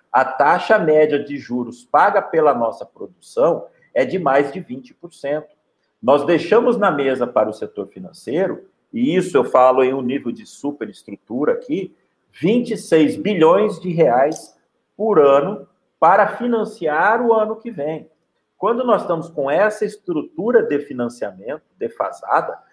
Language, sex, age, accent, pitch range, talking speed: Portuguese, male, 50-69, Brazilian, 160-235 Hz, 140 wpm